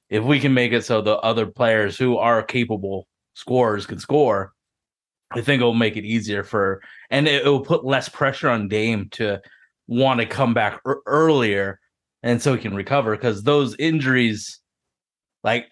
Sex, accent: male, American